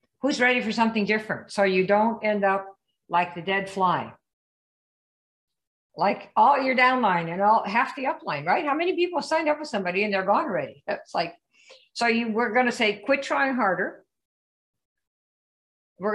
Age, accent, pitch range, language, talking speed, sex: 50-69, American, 160-225 Hz, English, 170 wpm, female